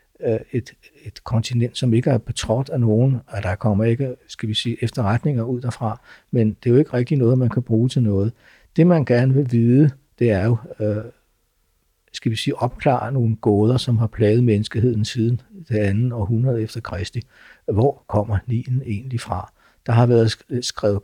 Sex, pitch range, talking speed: male, 110-125 Hz, 185 wpm